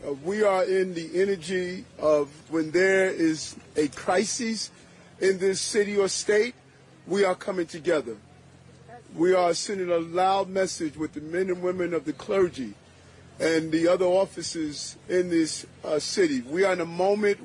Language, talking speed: English, 165 wpm